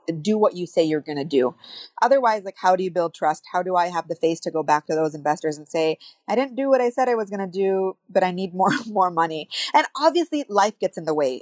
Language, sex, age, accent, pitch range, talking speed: English, female, 30-49, American, 160-200 Hz, 280 wpm